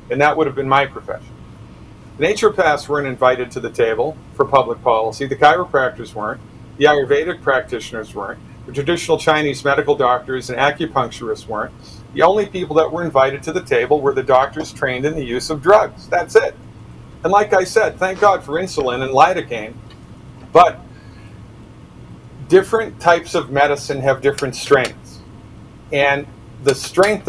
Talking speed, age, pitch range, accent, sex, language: 160 wpm, 50-69, 125-170 Hz, American, male, English